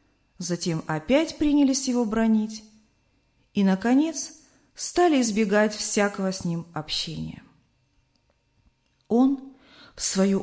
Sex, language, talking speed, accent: female, Russian, 90 wpm, native